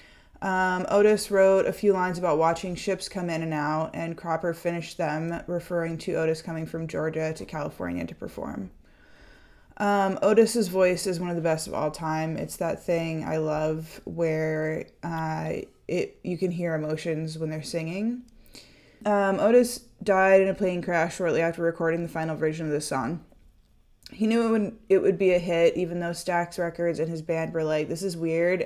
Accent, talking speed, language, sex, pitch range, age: American, 185 wpm, English, female, 160-185 Hz, 20-39